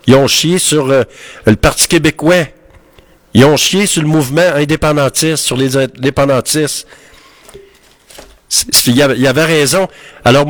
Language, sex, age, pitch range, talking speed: French, male, 60-79, 115-160 Hz, 160 wpm